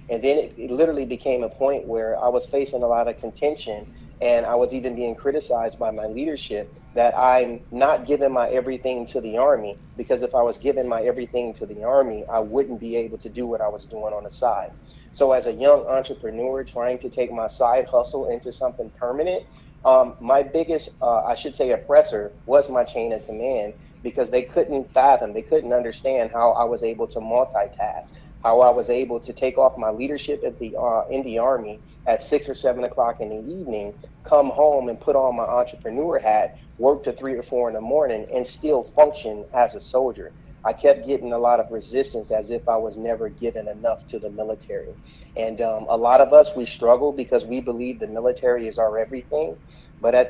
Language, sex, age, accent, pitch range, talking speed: English, male, 30-49, American, 115-140 Hz, 210 wpm